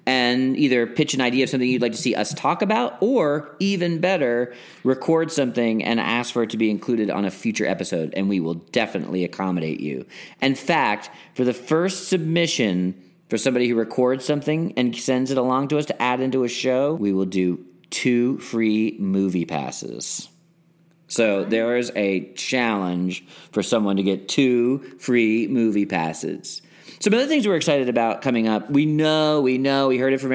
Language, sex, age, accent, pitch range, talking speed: English, male, 40-59, American, 110-135 Hz, 185 wpm